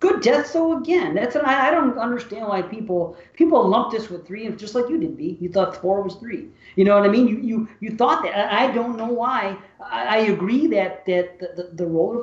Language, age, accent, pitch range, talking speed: English, 40-59, American, 165-225 Hz, 230 wpm